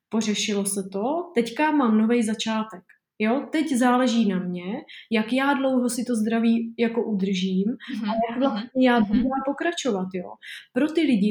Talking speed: 150 wpm